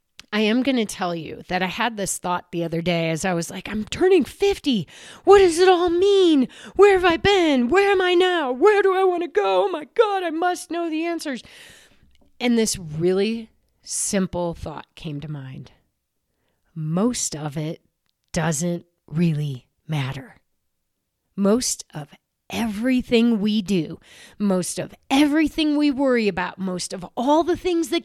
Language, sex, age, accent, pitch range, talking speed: English, female, 30-49, American, 175-270 Hz, 170 wpm